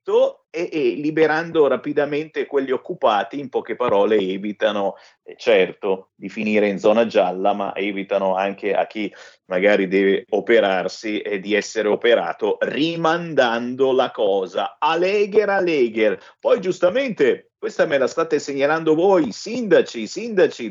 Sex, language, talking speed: male, Italian, 120 wpm